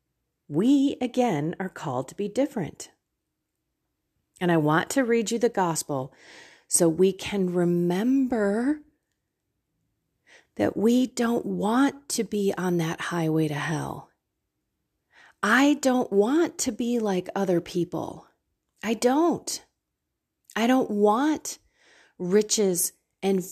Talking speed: 115 wpm